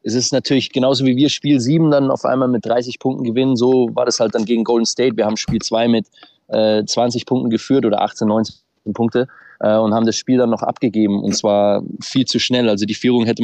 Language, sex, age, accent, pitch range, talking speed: German, male, 20-39, German, 105-120 Hz, 235 wpm